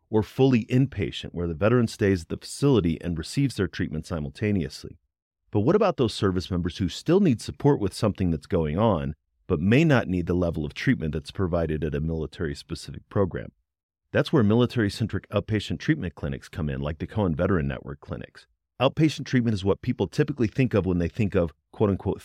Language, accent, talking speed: English, American, 190 wpm